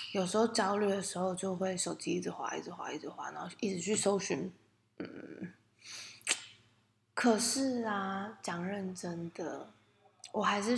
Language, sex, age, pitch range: Chinese, female, 20-39, 160-210 Hz